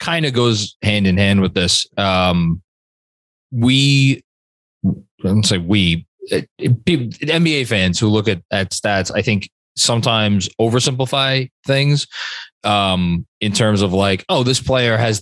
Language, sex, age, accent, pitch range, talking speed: English, male, 20-39, American, 100-130 Hz, 130 wpm